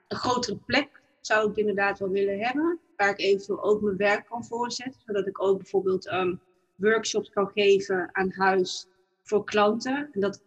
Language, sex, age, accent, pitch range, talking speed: Dutch, female, 30-49, Dutch, 200-225 Hz, 185 wpm